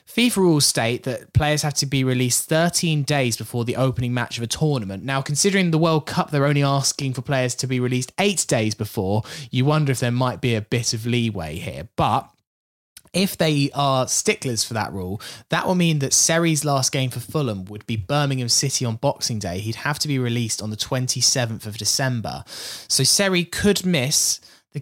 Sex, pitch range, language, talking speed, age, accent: male, 110-140 Hz, English, 205 wpm, 20-39, British